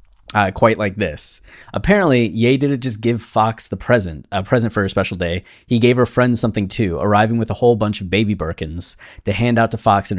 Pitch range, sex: 95-115 Hz, male